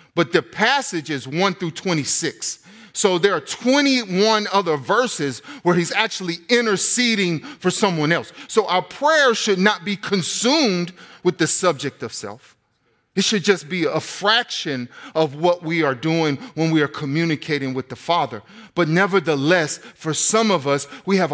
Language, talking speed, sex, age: English, 165 wpm, male, 40-59